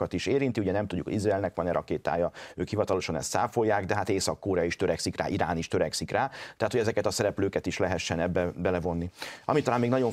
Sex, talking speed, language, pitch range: male, 215 wpm, Hungarian, 90-120 Hz